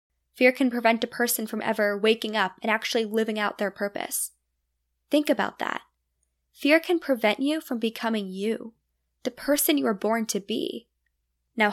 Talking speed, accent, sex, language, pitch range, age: 170 wpm, American, female, English, 205-270 Hz, 10-29